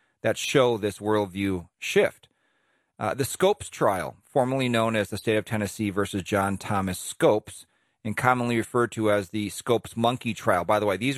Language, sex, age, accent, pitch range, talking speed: English, male, 40-59, American, 105-140 Hz, 175 wpm